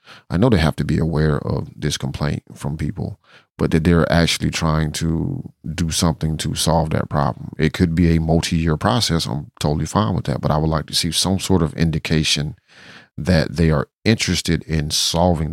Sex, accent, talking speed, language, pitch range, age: male, American, 195 wpm, English, 75-85 Hz, 40-59